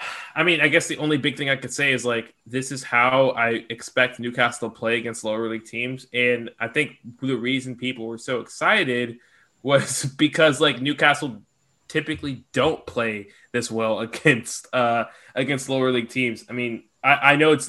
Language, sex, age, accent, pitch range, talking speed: English, male, 10-29, American, 115-135 Hz, 185 wpm